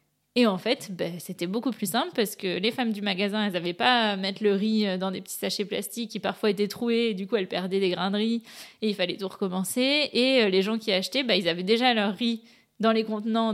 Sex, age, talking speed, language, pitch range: female, 20-39, 255 wpm, French, 190-225 Hz